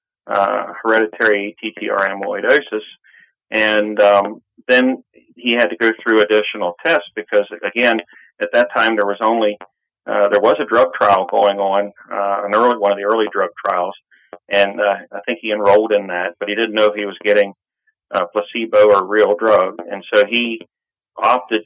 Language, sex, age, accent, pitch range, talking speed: English, male, 40-59, American, 100-125 Hz, 180 wpm